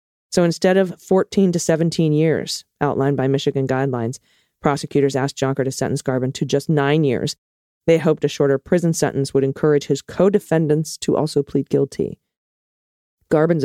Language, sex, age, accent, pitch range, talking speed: English, female, 40-59, American, 130-155 Hz, 160 wpm